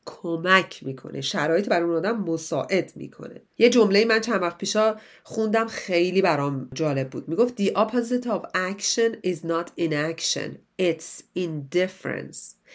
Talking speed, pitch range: 140 wpm, 155-200 Hz